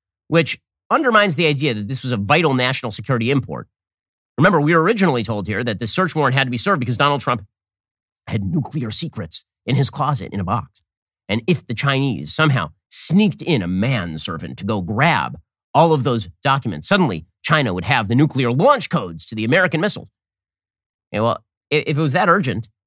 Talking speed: 190 wpm